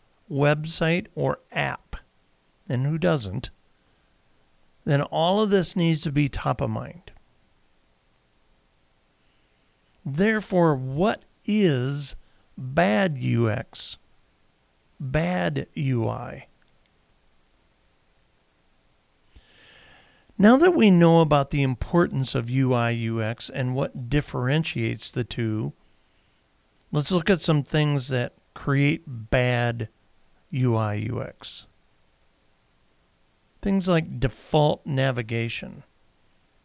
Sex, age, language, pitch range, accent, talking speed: male, 50-69, English, 110-160 Hz, American, 85 wpm